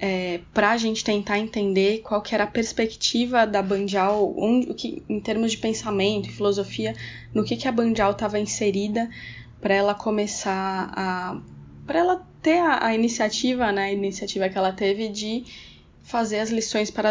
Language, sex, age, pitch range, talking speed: Portuguese, female, 10-29, 195-230 Hz, 175 wpm